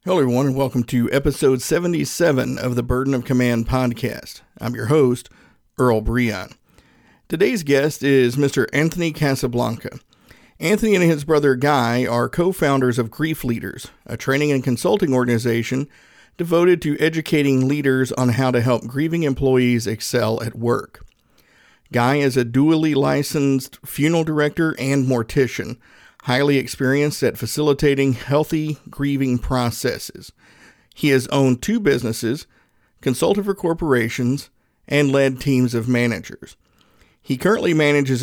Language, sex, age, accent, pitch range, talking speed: English, male, 50-69, American, 125-150 Hz, 130 wpm